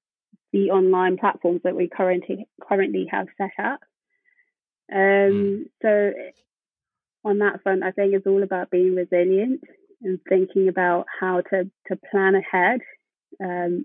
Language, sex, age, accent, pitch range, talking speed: English, female, 20-39, British, 180-210 Hz, 135 wpm